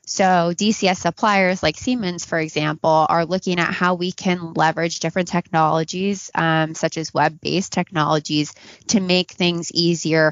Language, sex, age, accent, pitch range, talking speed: English, female, 20-39, American, 160-185 Hz, 145 wpm